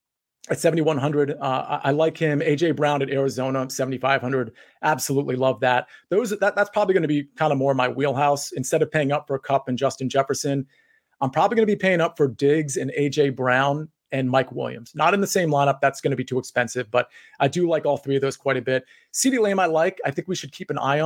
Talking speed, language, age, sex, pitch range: 240 wpm, English, 30-49, male, 130-160 Hz